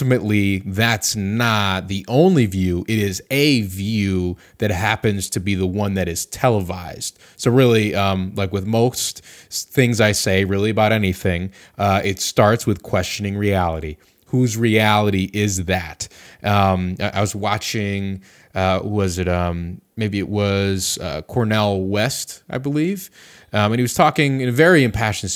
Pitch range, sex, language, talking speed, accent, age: 95-115 Hz, male, English, 160 wpm, American, 20-39